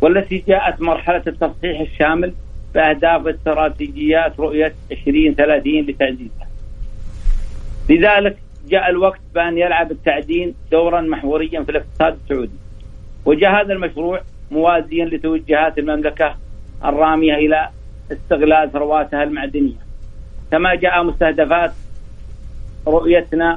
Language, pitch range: Arabic, 150-170 Hz